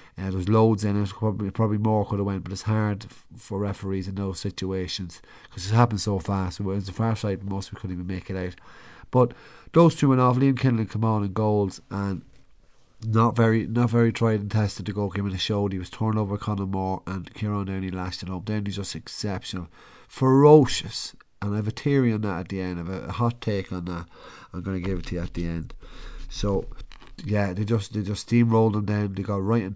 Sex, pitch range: male, 95-110 Hz